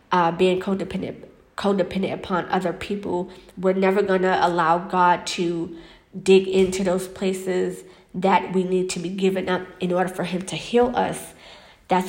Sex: female